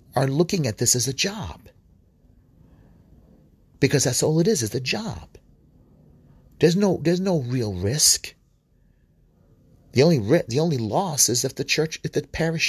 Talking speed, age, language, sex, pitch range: 160 wpm, 40-59, English, male, 85-140 Hz